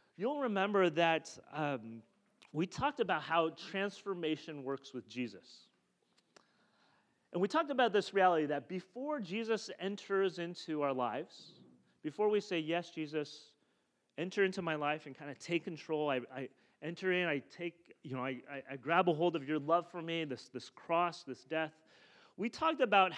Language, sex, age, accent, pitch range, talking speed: English, male, 30-49, American, 150-195 Hz, 170 wpm